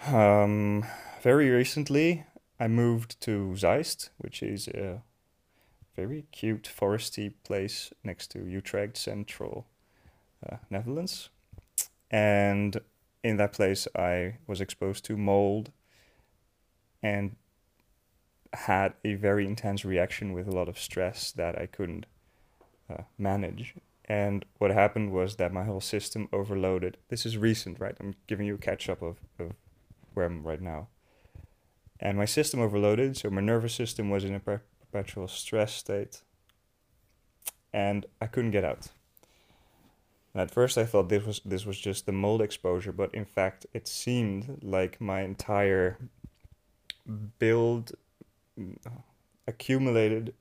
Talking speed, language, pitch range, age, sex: 130 wpm, English, 100-115 Hz, 30-49, male